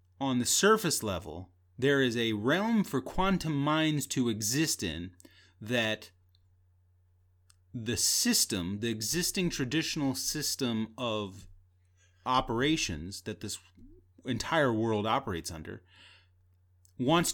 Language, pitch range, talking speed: English, 90-130 Hz, 105 wpm